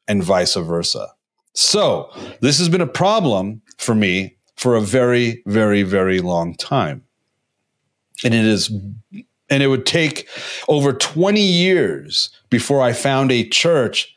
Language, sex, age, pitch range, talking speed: English, male, 40-59, 110-150 Hz, 140 wpm